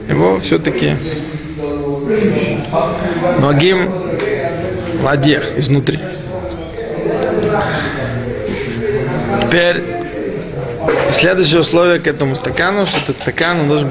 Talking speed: 65 wpm